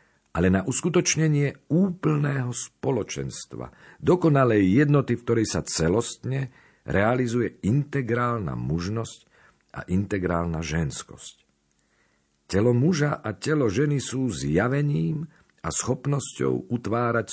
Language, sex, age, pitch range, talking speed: Slovak, male, 50-69, 80-125 Hz, 95 wpm